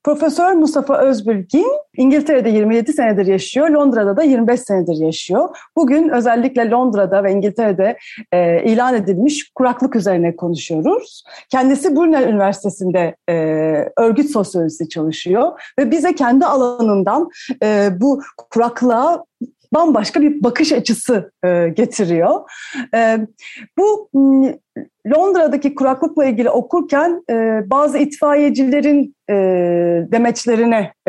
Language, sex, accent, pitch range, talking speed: Turkish, female, native, 195-275 Hz, 90 wpm